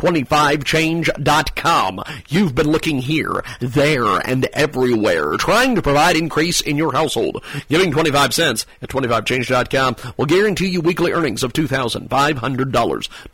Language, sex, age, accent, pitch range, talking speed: English, male, 40-59, American, 130-170 Hz, 120 wpm